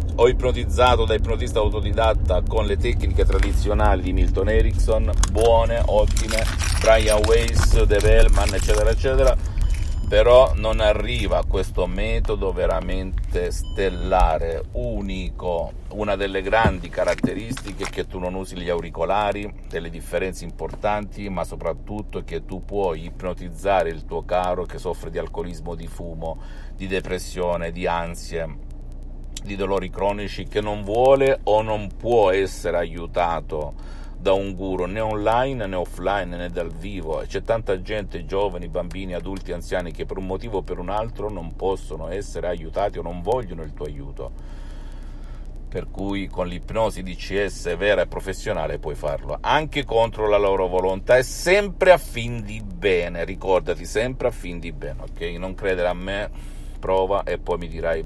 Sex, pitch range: male, 85-105 Hz